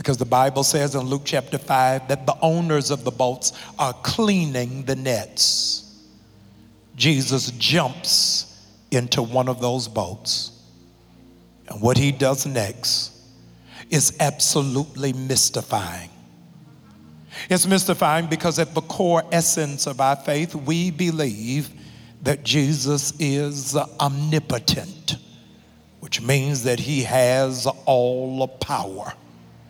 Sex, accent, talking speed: male, American, 115 wpm